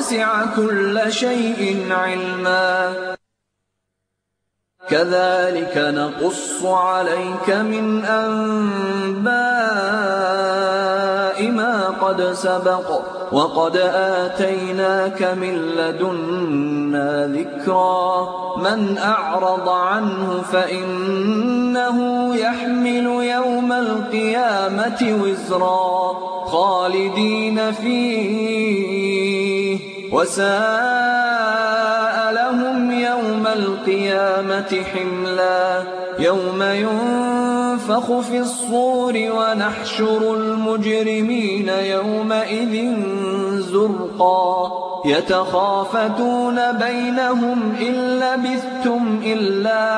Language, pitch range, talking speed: Indonesian, 185-225 Hz, 55 wpm